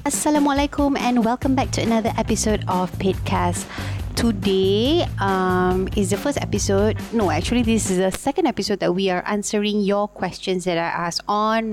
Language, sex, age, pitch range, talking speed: English, female, 30-49, 180-250 Hz, 165 wpm